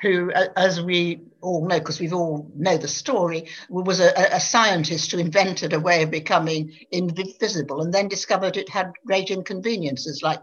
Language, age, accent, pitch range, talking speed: English, 60-79, British, 170-220 Hz, 180 wpm